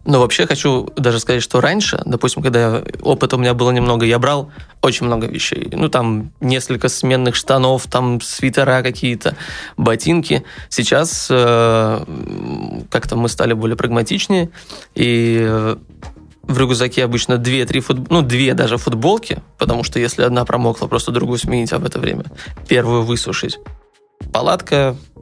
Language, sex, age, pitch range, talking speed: Russian, male, 20-39, 120-140 Hz, 145 wpm